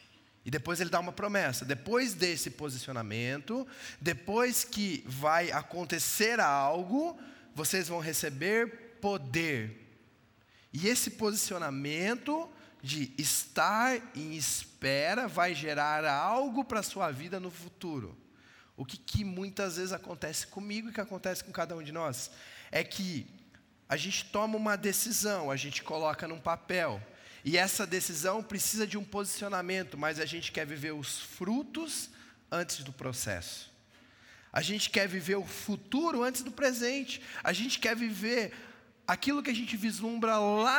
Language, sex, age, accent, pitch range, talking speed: Portuguese, male, 20-39, Brazilian, 155-225 Hz, 145 wpm